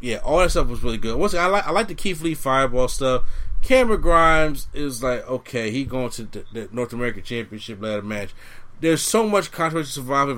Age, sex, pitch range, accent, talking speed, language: 30-49, male, 120-160 Hz, American, 215 wpm, English